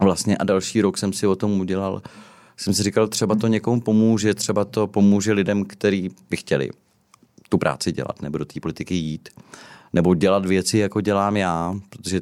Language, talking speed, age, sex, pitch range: Czech, 185 wpm, 30-49, male, 85-105 Hz